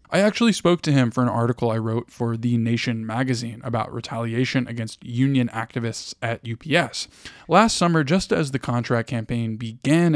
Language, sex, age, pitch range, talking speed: English, male, 10-29, 120-150 Hz, 170 wpm